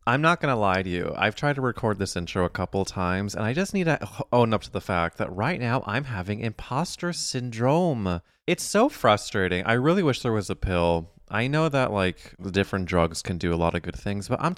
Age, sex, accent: 20-39, male, American